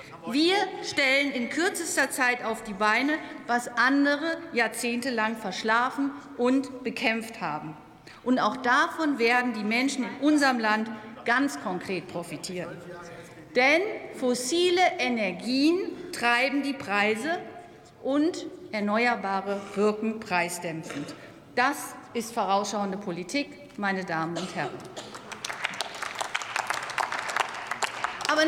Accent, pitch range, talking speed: German, 210-285 Hz, 95 wpm